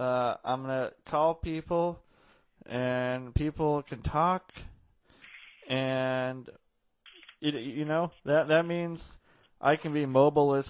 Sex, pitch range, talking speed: male, 125-150 Hz, 120 wpm